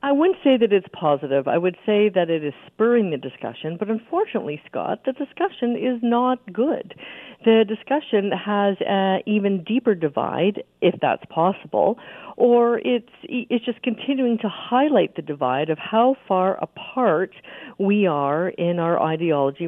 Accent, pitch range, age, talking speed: American, 170-260 Hz, 50-69, 155 wpm